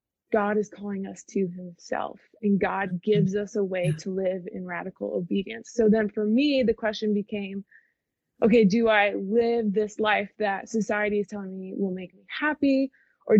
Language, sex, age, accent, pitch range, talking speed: English, female, 20-39, American, 195-230 Hz, 180 wpm